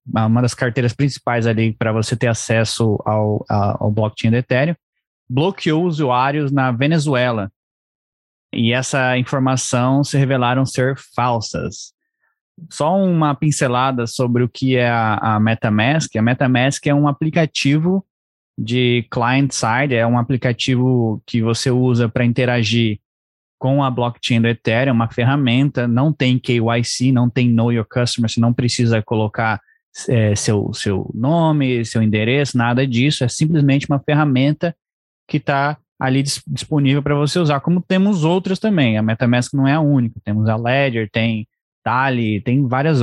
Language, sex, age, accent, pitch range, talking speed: Portuguese, male, 20-39, Brazilian, 115-145 Hz, 145 wpm